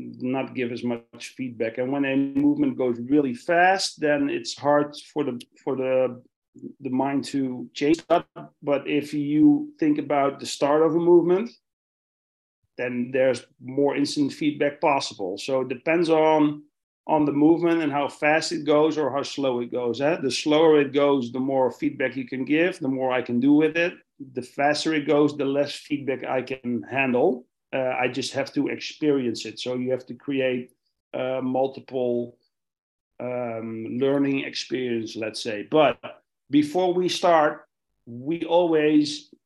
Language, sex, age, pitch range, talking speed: English, male, 40-59, 130-160 Hz, 165 wpm